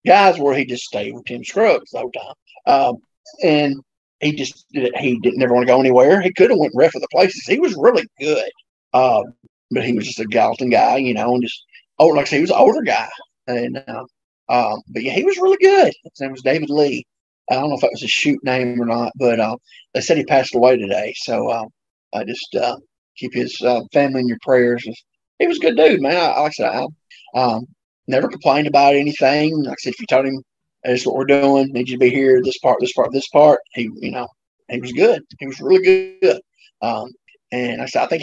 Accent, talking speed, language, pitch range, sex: American, 245 wpm, English, 125-145 Hz, male